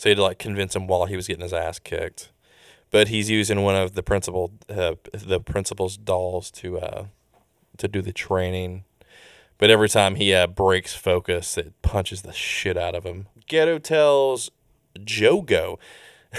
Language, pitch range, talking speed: English, 90-110 Hz, 170 wpm